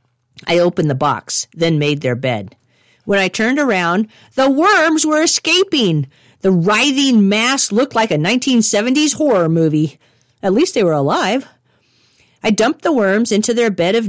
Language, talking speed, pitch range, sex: English, 160 wpm, 130-215 Hz, female